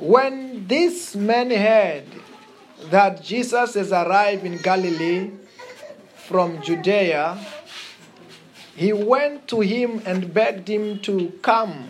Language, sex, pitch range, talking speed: English, male, 185-235 Hz, 105 wpm